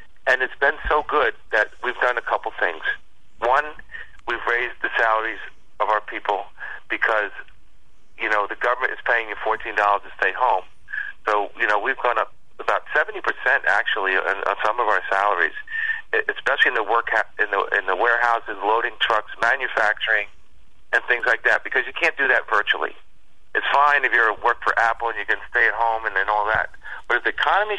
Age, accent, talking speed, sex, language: 40-59, American, 195 wpm, male, English